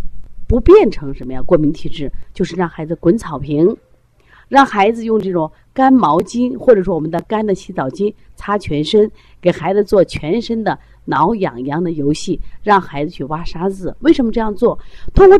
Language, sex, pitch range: Chinese, female, 145-230 Hz